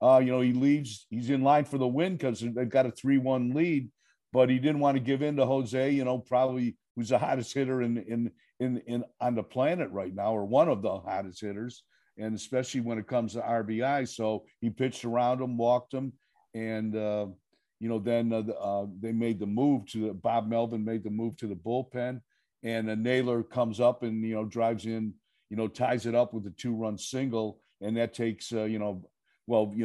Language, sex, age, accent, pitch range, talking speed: English, male, 50-69, American, 110-130 Hz, 220 wpm